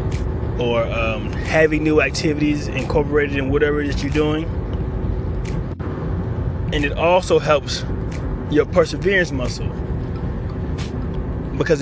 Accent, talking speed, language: American, 105 wpm, English